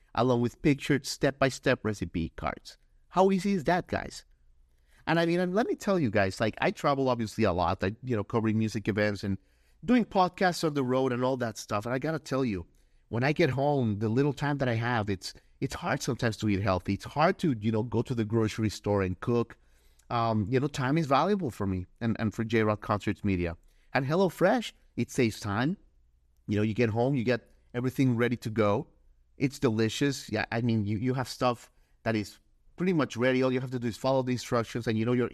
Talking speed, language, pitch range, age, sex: 230 wpm, English, 105-140 Hz, 30-49, male